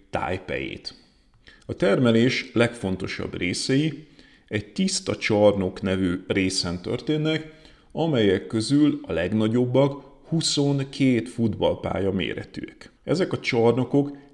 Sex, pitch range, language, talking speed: male, 95-135 Hz, Hungarian, 90 wpm